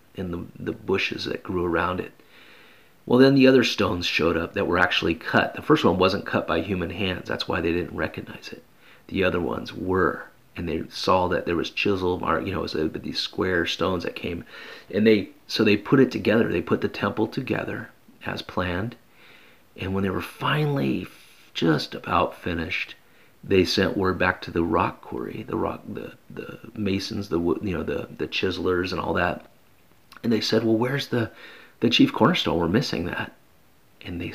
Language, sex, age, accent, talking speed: English, male, 40-59, American, 195 wpm